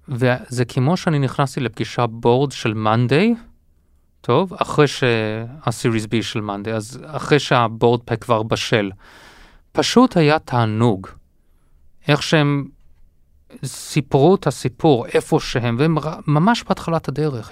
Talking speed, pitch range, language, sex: 115 wpm, 115-155 Hz, Hebrew, male